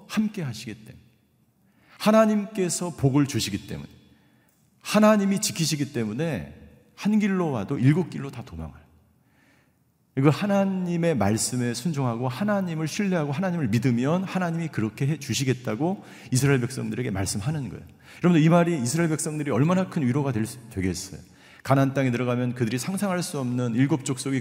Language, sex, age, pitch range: Korean, male, 40-59, 110-160 Hz